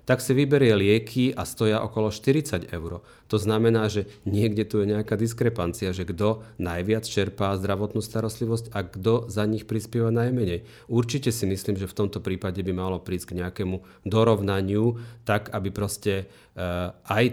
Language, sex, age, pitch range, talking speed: Slovak, male, 40-59, 95-110 Hz, 160 wpm